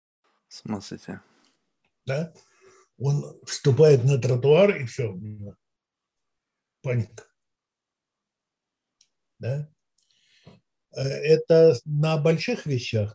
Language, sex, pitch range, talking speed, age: Russian, male, 110-150 Hz, 50 wpm, 60-79